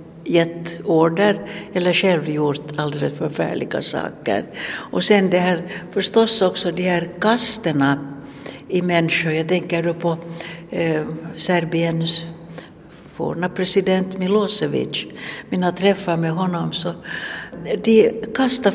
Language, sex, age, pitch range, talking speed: Finnish, female, 60-79, 155-185 Hz, 105 wpm